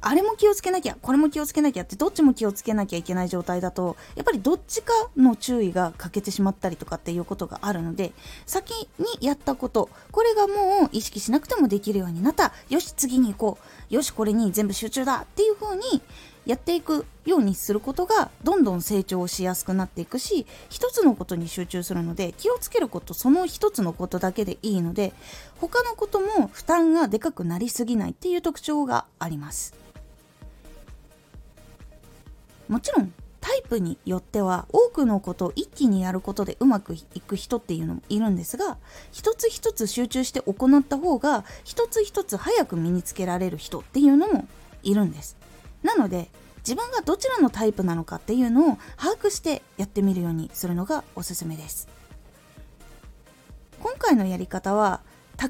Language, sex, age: Japanese, female, 20-39